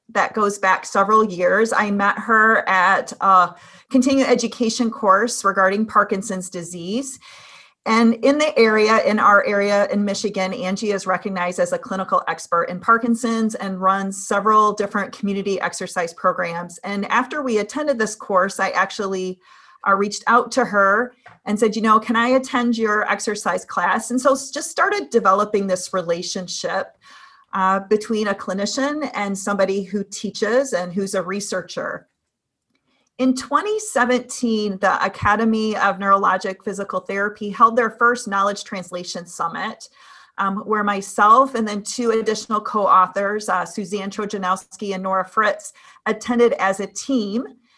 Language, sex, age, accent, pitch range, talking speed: English, female, 40-59, American, 195-235 Hz, 145 wpm